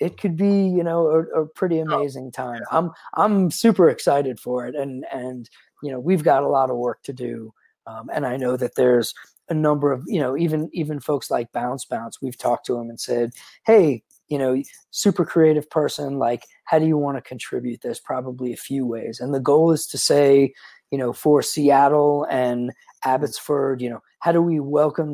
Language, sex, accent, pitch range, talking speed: English, male, American, 125-155 Hz, 210 wpm